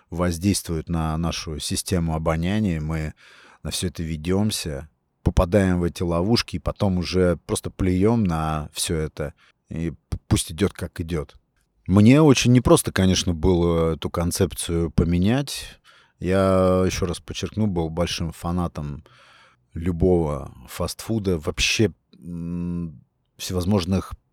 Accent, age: native, 30-49